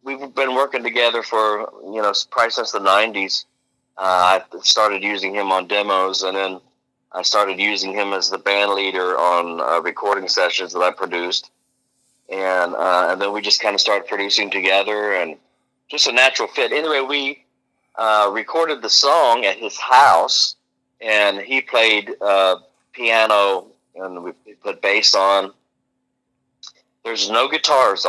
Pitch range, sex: 95-120 Hz, male